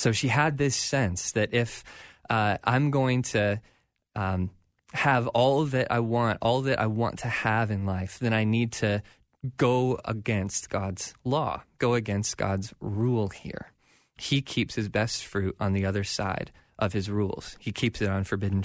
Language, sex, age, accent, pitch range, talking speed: English, male, 20-39, American, 105-125 Hz, 175 wpm